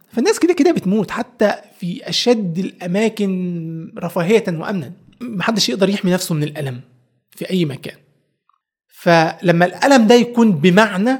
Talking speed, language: 130 wpm, Arabic